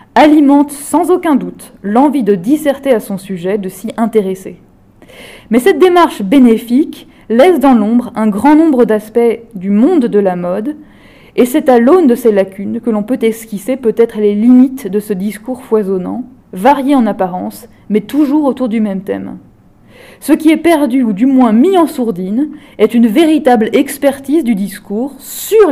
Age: 20-39